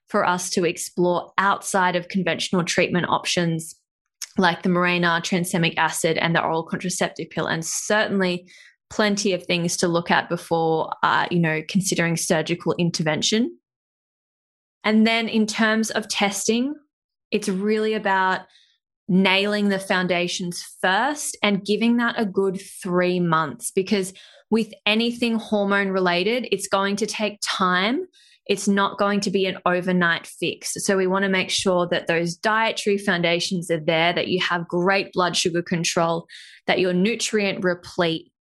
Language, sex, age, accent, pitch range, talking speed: English, female, 20-39, Australian, 175-205 Hz, 145 wpm